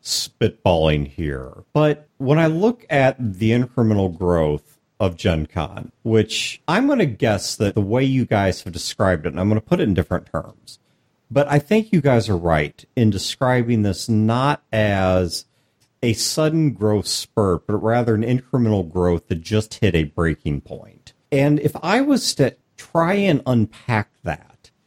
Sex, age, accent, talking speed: male, 50-69, American, 170 wpm